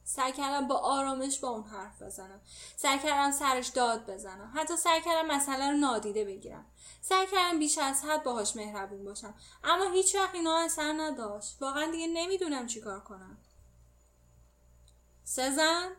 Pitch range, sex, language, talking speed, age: 205-300 Hz, female, Persian, 135 wpm, 10-29